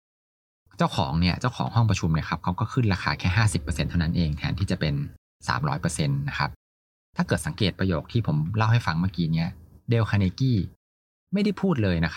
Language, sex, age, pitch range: Thai, male, 20-39, 85-115 Hz